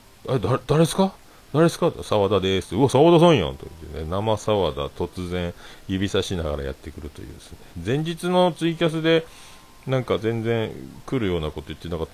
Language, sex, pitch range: Japanese, male, 80-120 Hz